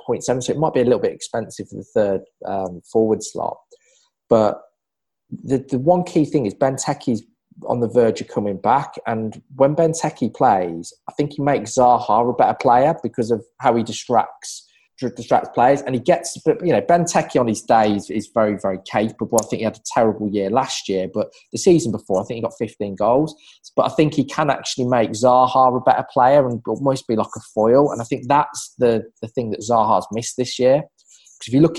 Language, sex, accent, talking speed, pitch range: English, male, British, 215 wpm, 110-140 Hz